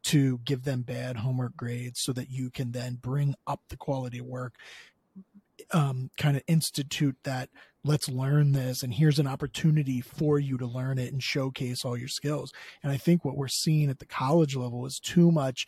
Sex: male